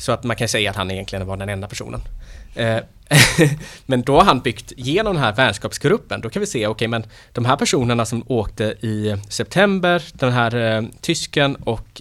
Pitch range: 100-130 Hz